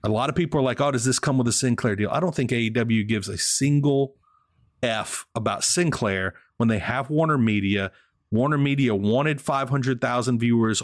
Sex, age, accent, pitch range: male, 30-49, American, 110-145 Hz